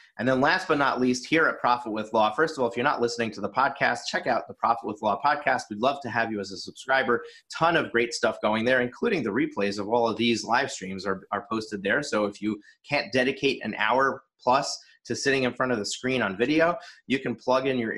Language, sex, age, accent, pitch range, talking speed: English, male, 30-49, American, 105-125 Hz, 255 wpm